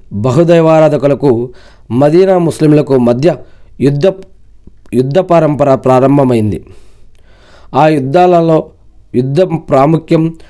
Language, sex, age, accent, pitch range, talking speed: Telugu, male, 40-59, native, 115-165 Hz, 70 wpm